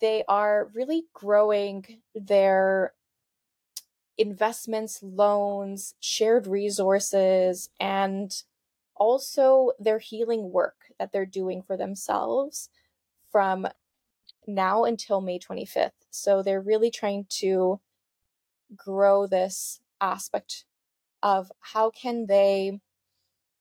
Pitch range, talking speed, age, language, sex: 190-220 Hz, 90 wpm, 20-39, English, female